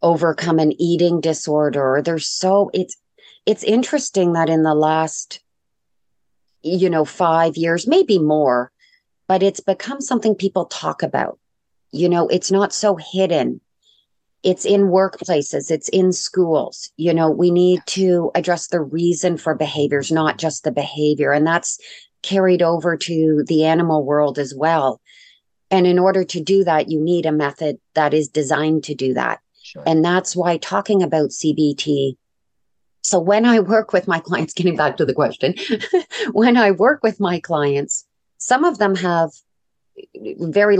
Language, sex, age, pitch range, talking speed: English, female, 40-59, 155-190 Hz, 155 wpm